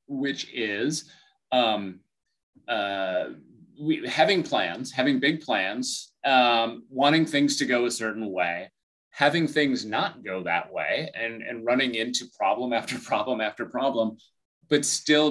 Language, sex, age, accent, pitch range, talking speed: English, male, 30-49, American, 110-150 Hz, 135 wpm